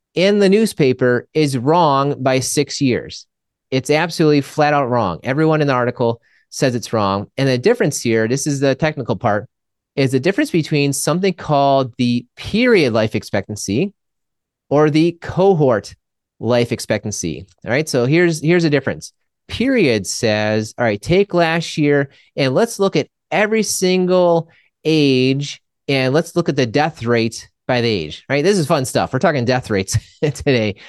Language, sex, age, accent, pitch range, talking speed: English, male, 30-49, American, 120-155 Hz, 165 wpm